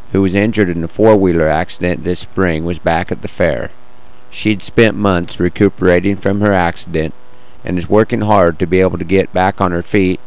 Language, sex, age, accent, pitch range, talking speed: English, male, 50-69, American, 85-105 Hz, 200 wpm